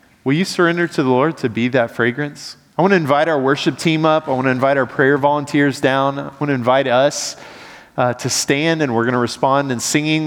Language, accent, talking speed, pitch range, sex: English, American, 215 wpm, 120-150 Hz, male